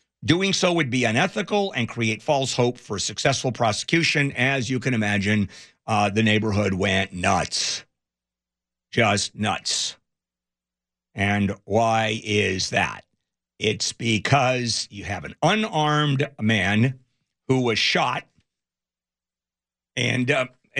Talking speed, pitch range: 115 wpm, 105-135 Hz